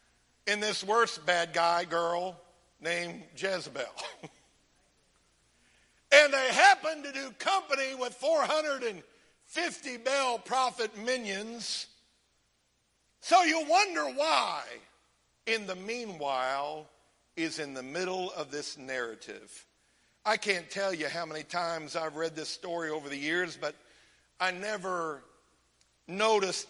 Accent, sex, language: American, male, English